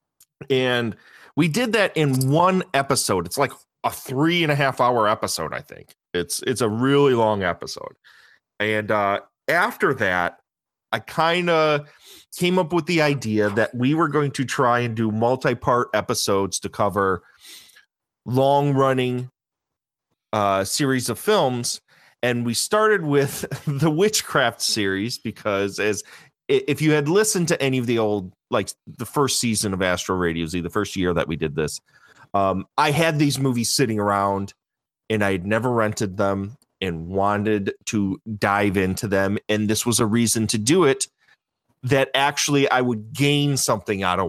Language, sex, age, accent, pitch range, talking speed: English, male, 30-49, American, 105-155 Hz, 165 wpm